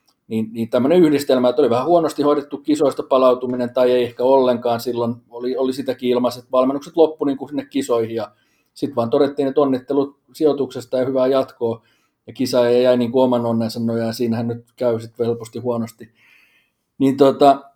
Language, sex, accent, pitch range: Finnish, male, native, 115-145 Hz